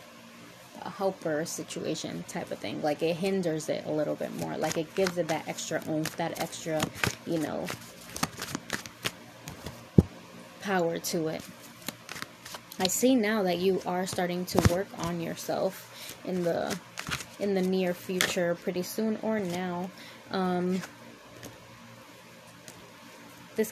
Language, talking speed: English, 125 wpm